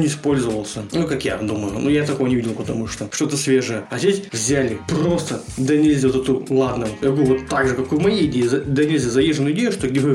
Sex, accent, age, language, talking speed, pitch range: male, native, 20-39, Russian, 220 wpm, 130-150 Hz